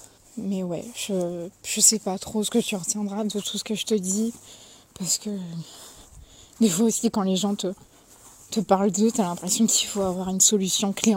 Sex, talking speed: female, 205 wpm